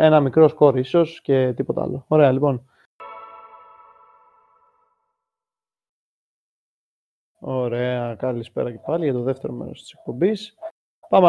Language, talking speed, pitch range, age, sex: Greek, 100 wpm, 125-150 Hz, 20-39, male